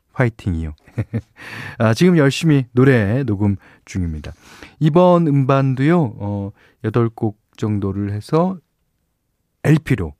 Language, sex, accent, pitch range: Korean, male, native, 100-155 Hz